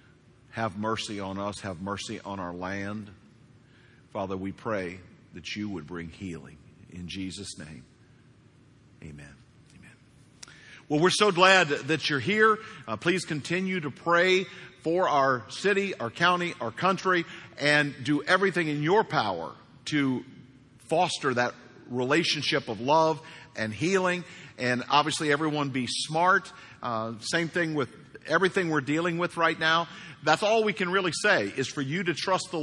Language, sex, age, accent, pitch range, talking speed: English, male, 50-69, American, 125-175 Hz, 150 wpm